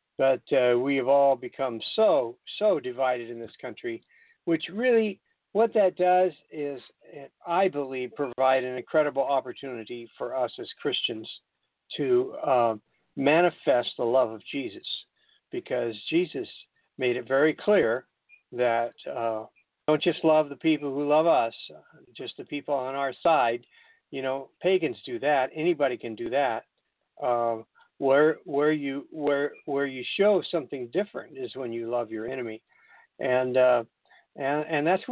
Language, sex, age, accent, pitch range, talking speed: English, male, 50-69, American, 135-200 Hz, 150 wpm